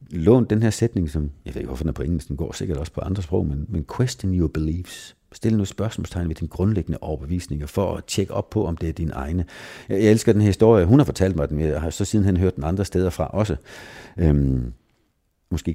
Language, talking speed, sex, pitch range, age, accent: Danish, 250 wpm, male, 80-125 Hz, 50-69, native